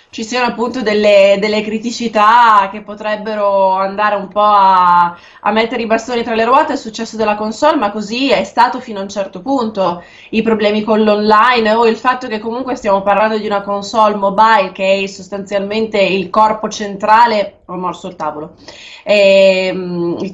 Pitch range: 195-230 Hz